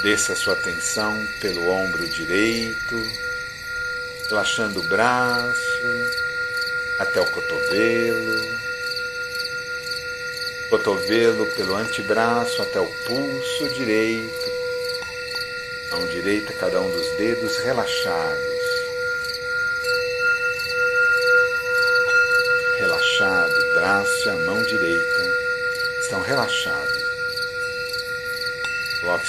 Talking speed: 75 wpm